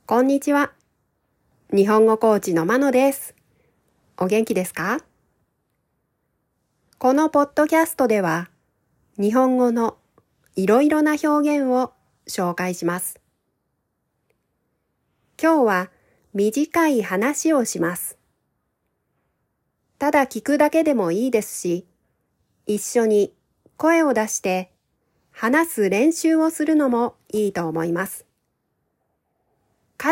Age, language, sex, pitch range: 40-59, Japanese, female, 195-295 Hz